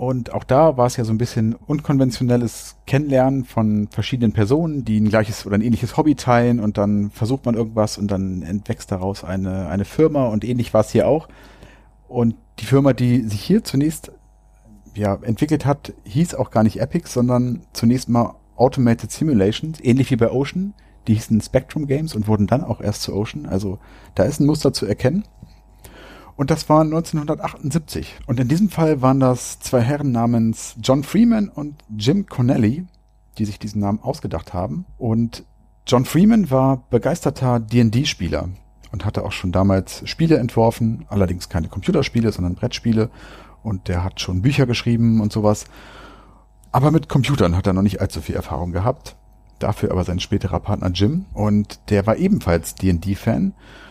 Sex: male